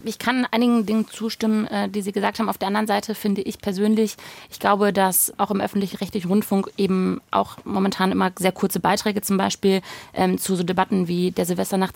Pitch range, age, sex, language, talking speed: 190-220 Hz, 30-49, female, German, 195 wpm